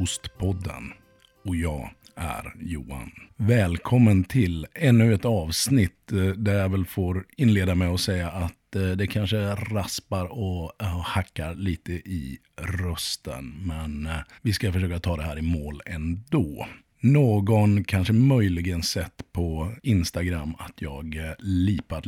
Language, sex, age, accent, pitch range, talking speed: Swedish, male, 50-69, native, 85-115 Hz, 125 wpm